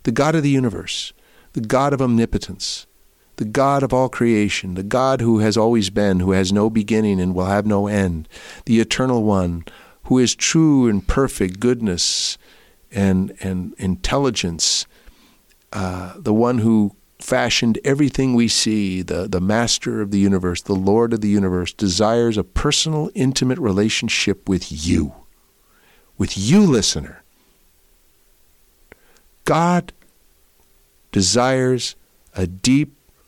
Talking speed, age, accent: 135 wpm, 50-69, American